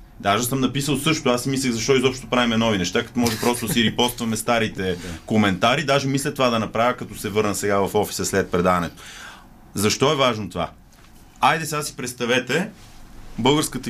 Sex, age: male, 30-49